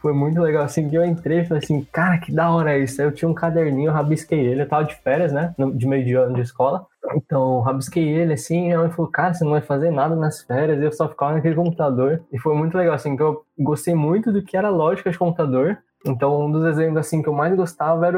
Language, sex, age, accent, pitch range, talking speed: Portuguese, male, 10-29, Brazilian, 140-170 Hz, 260 wpm